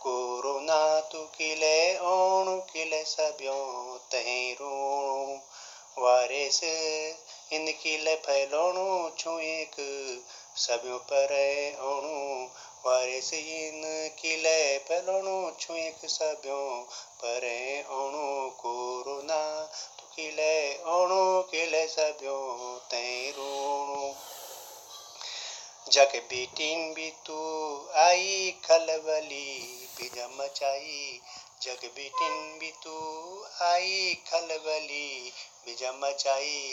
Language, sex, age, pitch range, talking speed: Hindi, male, 30-49, 135-160 Hz, 65 wpm